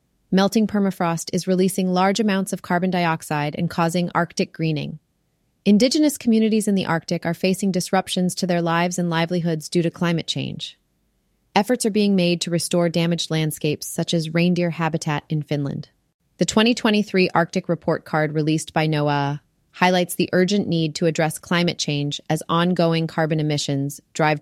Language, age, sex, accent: English, 30-49, female, American